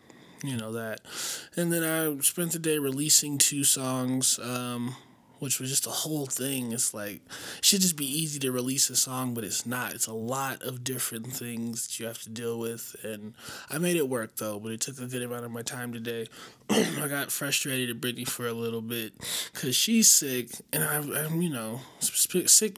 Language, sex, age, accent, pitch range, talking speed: English, male, 20-39, American, 120-145 Hz, 205 wpm